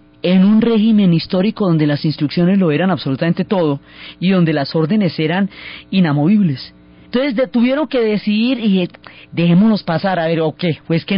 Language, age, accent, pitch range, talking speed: Spanish, 30-49, Colombian, 170-225 Hz, 175 wpm